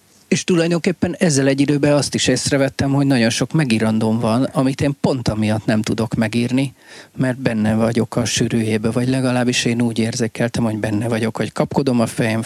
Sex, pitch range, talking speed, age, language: male, 110-130 Hz, 180 wpm, 40-59, Hungarian